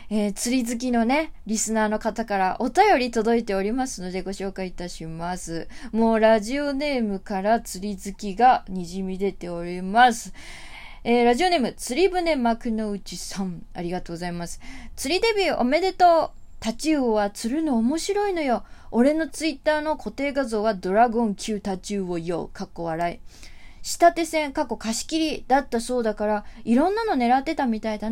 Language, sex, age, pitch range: Japanese, female, 20-39, 210-295 Hz